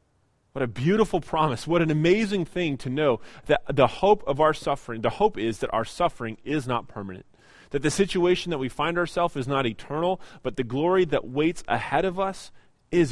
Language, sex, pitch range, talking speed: English, male, 110-140 Hz, 200 wpm